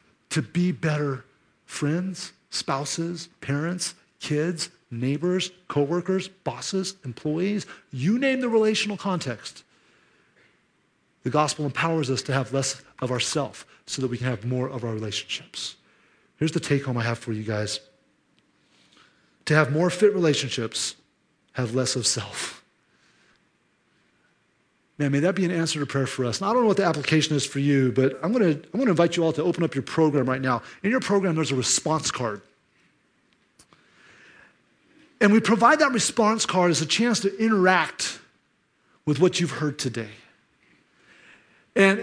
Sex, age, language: male, 30-49, English